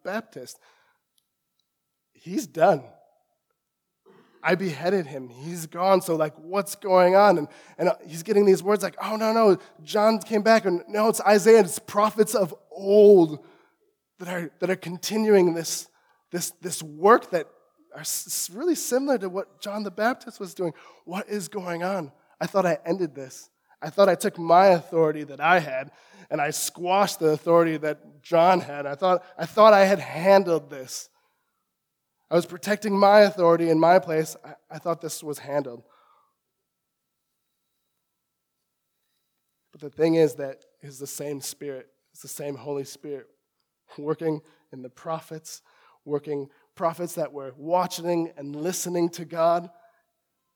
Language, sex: English, male